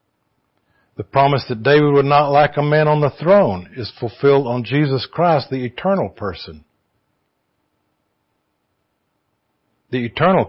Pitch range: 105-145 Hz